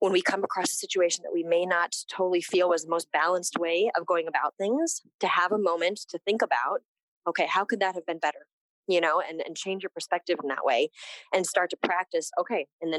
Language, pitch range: English, 160-205 Hz